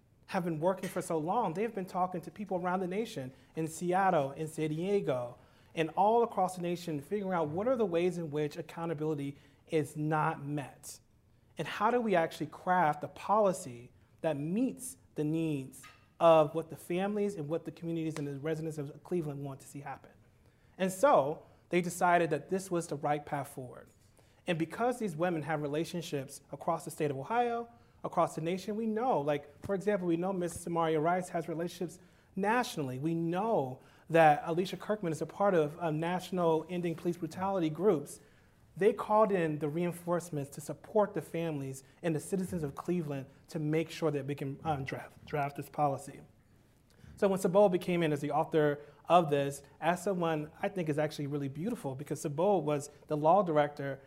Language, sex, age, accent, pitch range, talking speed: English, male, 30-49, American, 145-180 Hz, 185 wpm